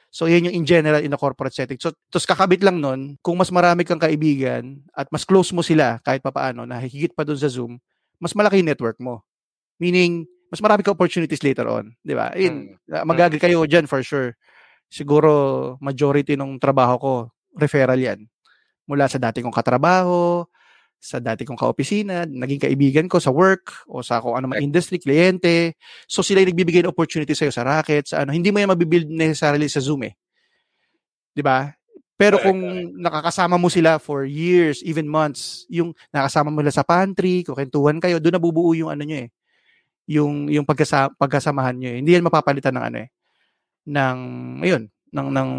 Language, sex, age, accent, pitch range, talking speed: Filipino, male, 20-39, native, 135-175 Hz, 185 wpm